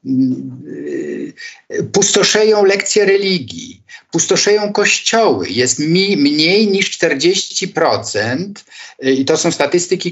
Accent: native